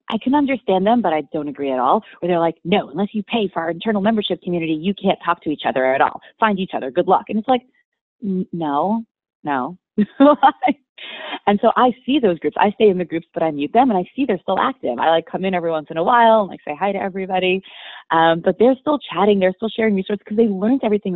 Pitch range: 165-220 Hz